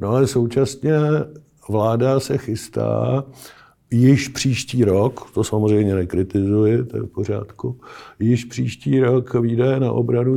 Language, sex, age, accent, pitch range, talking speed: Czech, male, 50-69, native, 110-135 Hz, 125 wpm